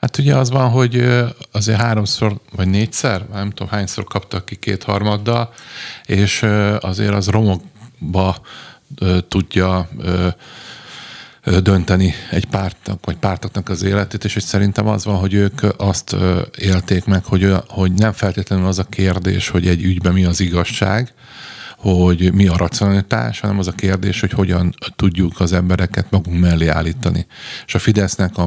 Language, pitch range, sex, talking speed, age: Hungarian, 90-100 Hz, male, 145 wpm, 50-69